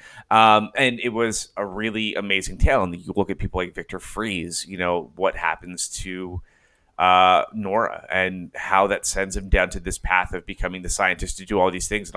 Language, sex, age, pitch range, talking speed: English, male, 30-49, 90-110 Hz, 205 wpm